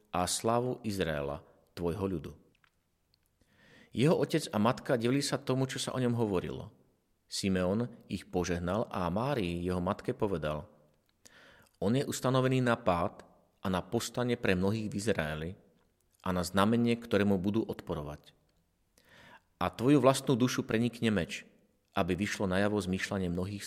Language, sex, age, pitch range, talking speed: Slovak, male, 40-59, 95-125 Hz, 140 wpm